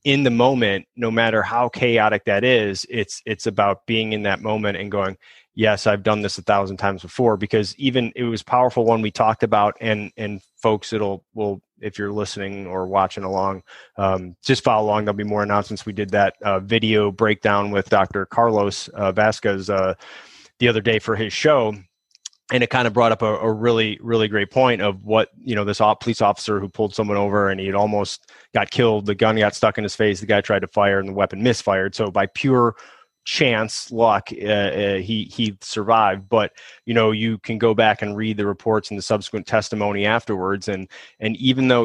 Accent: American